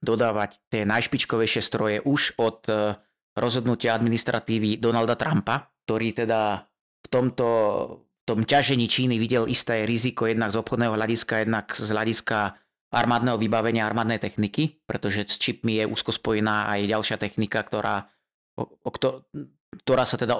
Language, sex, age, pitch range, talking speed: Slovak, male, 30-49, 105-120 Hz, 140 wpm